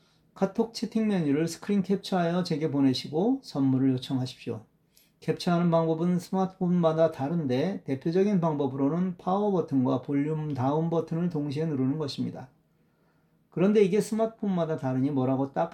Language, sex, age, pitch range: Korean, male, 40-59, 135-175 Hz